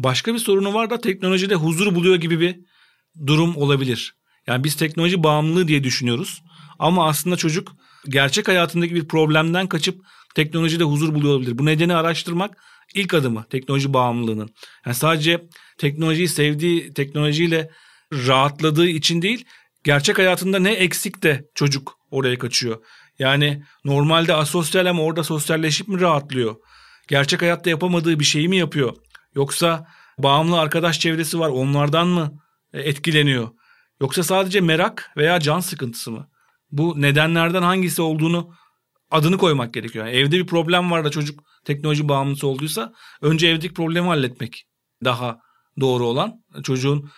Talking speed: 135 wpm